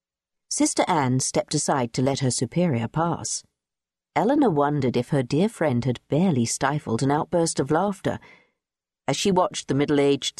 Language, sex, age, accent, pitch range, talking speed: English, female, 50-69, British, 130-175 Hz, 155 wpm